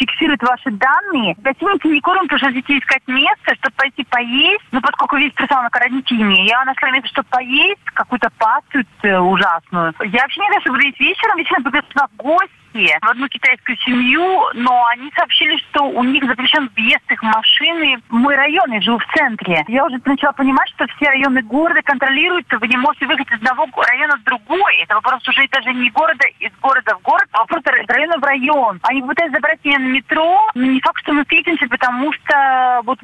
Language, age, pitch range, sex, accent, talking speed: Russian, 30-49, 240-295 Hz, female, native, 185 wpm